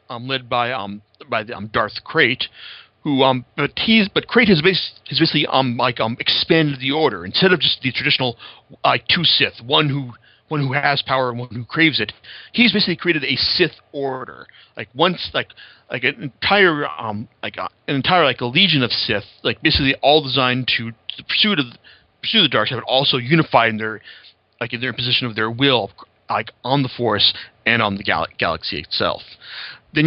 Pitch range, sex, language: 115-155 Hz, male, English